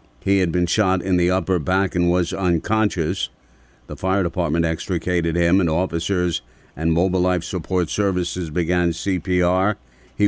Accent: American